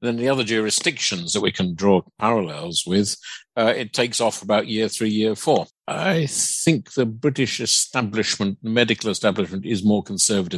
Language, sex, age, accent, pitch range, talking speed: English, male, 50-69, British, 95-120 Hz, 165 wpm